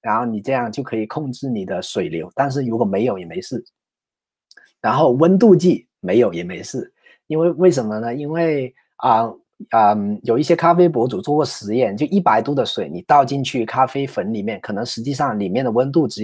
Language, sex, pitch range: Chinese, male, 110-155 Hz